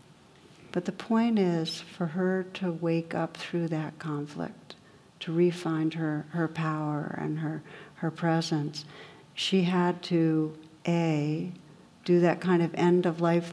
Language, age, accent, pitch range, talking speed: English, 60-79, American, 160-180 Hz, 135 wpm